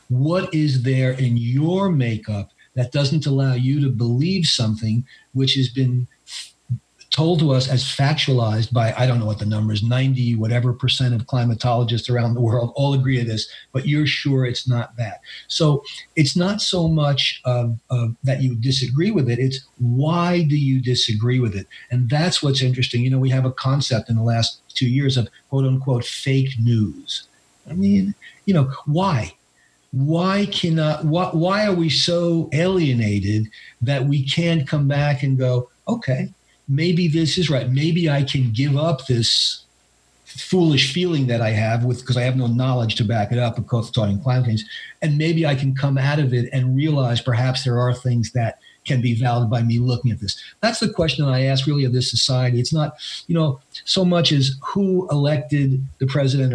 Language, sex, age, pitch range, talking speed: English, male, 40-59, 120-150 Hz, 190 wpm